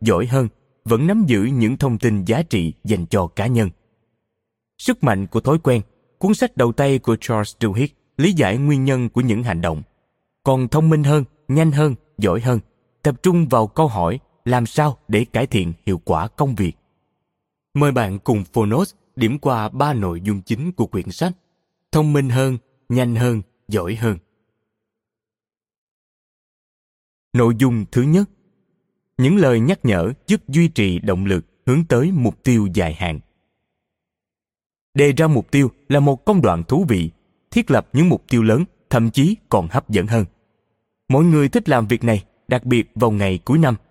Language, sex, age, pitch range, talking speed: Vietnamese, male, 20-39, 110-145 Hz, 175 wpm